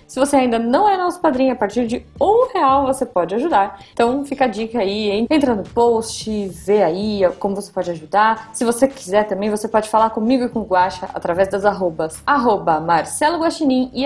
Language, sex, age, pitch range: Portuguese, female, 20-39, 210-295 Hz